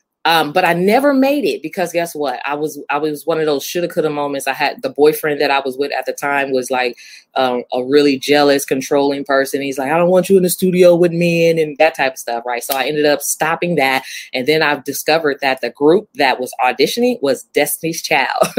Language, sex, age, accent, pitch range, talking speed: English, female, 20-39, American, 140-185 Hz, 240 wpm